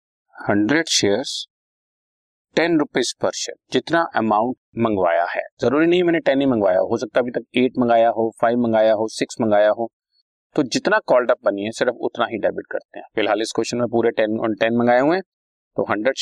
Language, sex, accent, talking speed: Hindi, male, native, 120 wpm